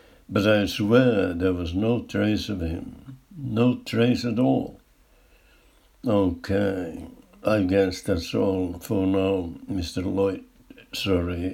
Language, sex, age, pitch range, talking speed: Finnish, male, 60-79, 90-110 Hz, 120 wpm